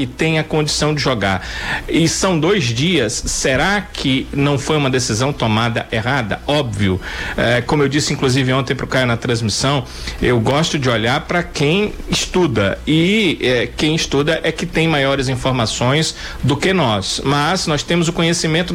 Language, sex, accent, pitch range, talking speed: Portuguese, male, Brazilian, 130-185 Hz, 170 wpm